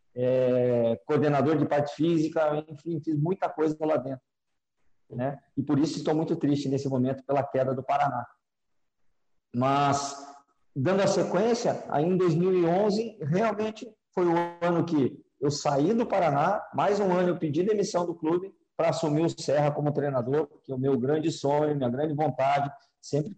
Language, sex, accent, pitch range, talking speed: Portuguese, male, Brazilian, 140-165 Hz, 160 wpm